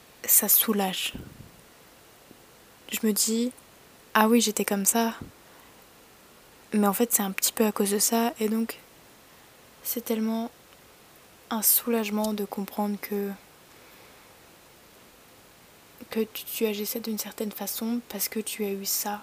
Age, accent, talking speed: 20-39, French, 130 wpm